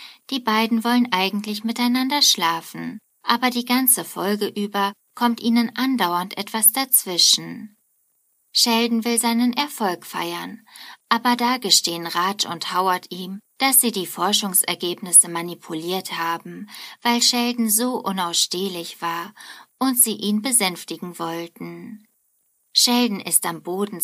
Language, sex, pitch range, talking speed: German, female, 180-235 Hz, 120 wpm